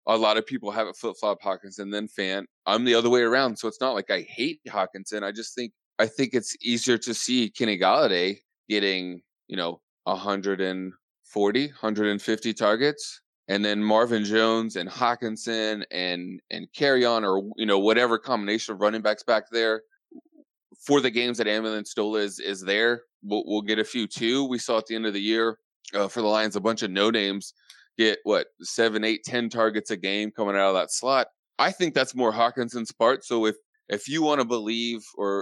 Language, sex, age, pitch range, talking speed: English, male, 20-39, 100-120 Hz, 200 wpm